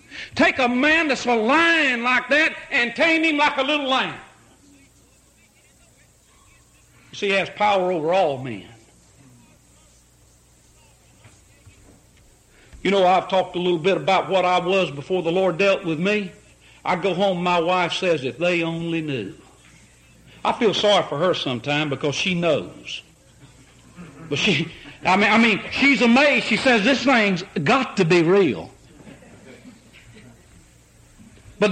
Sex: male